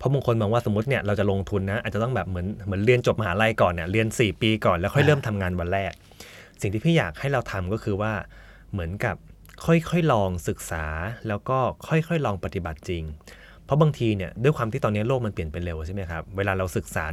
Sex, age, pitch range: male, 20-39, 90-120 Hz